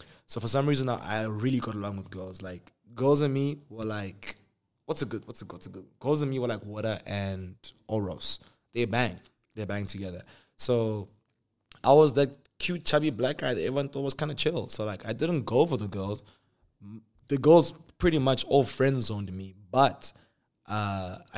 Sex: male